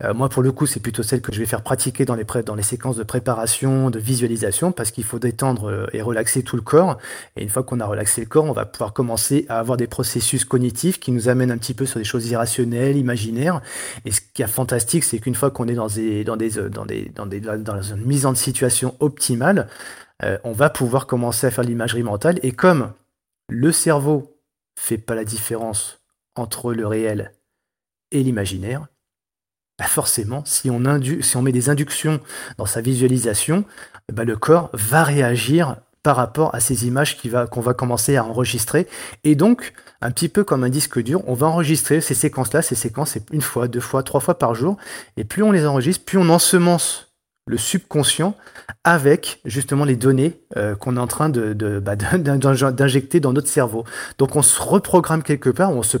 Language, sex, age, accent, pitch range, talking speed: French, male, 30-49, French, 115-145 Hz, 200 wpm